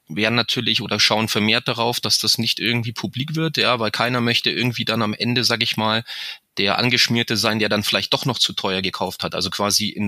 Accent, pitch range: German, 105-125 Hz